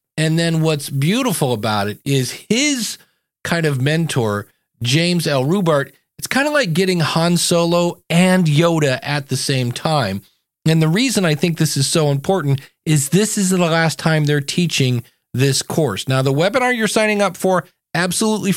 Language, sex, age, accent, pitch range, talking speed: English, male, 40-59, American, 130-165 Hz, 175 wpm